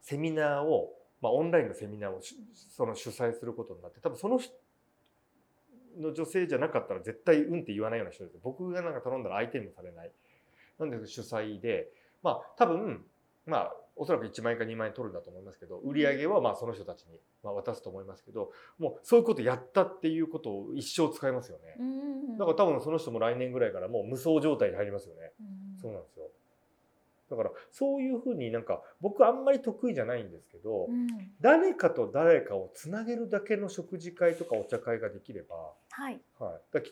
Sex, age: male, 30-49